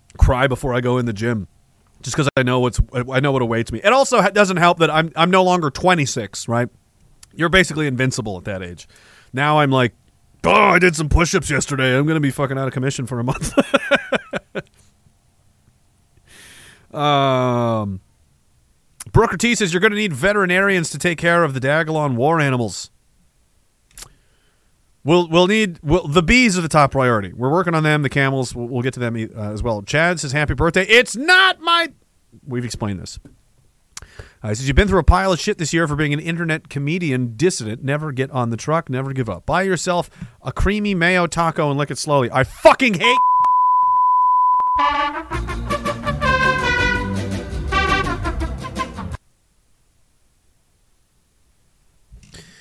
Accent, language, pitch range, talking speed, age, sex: American, English, 120-180 Hz, 160 wpm, 30-49, male